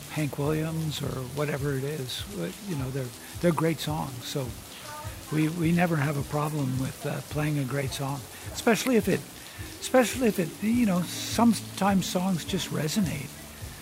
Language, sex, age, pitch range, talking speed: English, male, 60-79, 135-160 Hz, 160 wpm